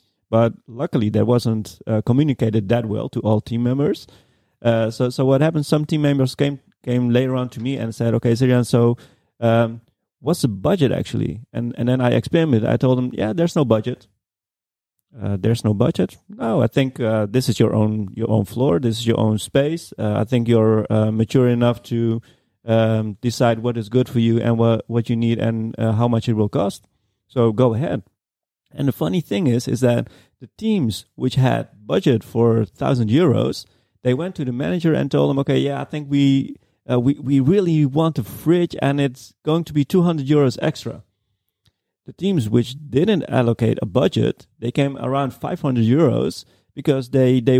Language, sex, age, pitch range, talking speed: English, male, 30-49, 115-140 Hz, 195 wpm